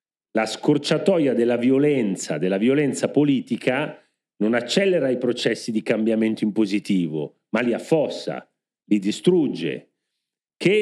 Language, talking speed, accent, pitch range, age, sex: Italian, 115 wpm, native, 120-165 Hz, 40-59, male